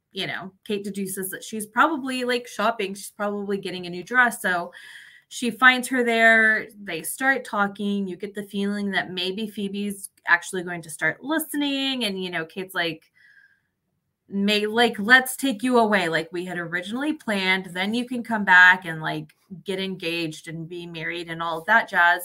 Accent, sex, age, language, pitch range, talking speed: American, female, 20-39, English, 180-230 Hz, 185 wpm